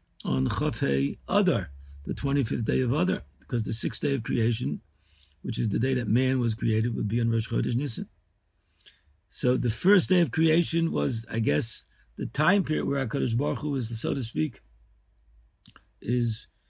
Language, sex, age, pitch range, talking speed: English, male, 50-69, 105-155 Hz, 175 wpm